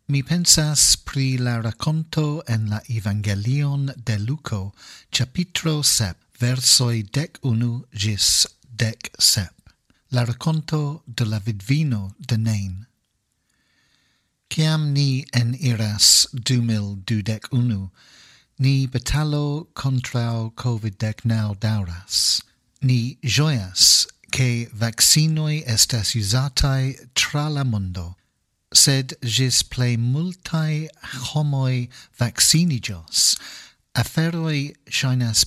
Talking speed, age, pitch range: 85 wpm, 50-69, 110-135 Hz